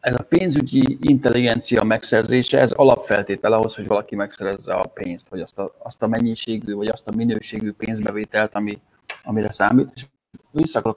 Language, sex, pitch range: Hungarian, male, 110-130 Hz